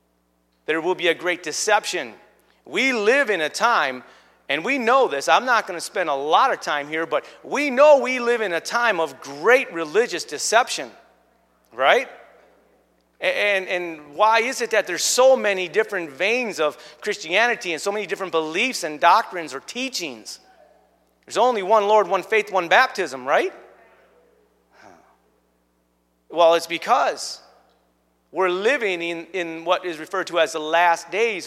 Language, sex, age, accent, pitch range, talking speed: English, male, 40-59, American, 155-240 Hz, 160 wpm